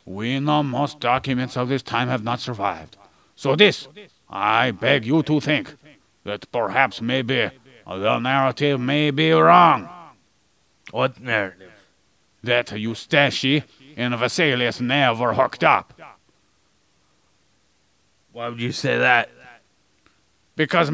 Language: English